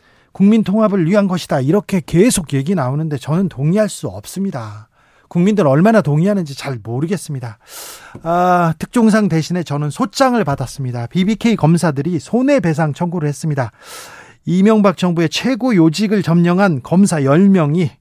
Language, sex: Korean, male